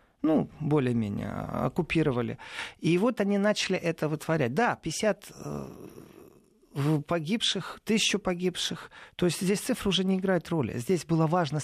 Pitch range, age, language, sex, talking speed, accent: 135-180 Hz, 40-59, Russian, male, 135 wpm, native